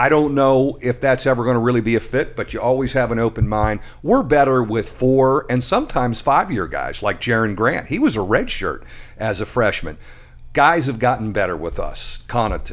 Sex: male